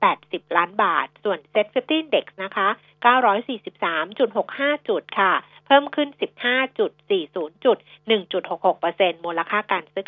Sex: female